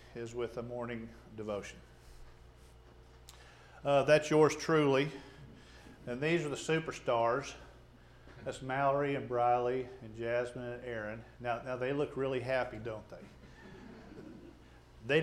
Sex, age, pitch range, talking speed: male, 40-59, 115-160 Hz, 120 wpm